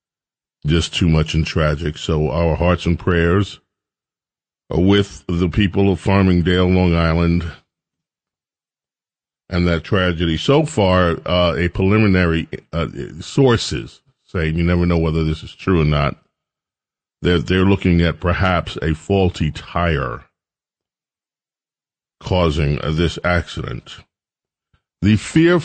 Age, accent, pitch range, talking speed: 40-59, American, 85-110 Hz, 120 wpm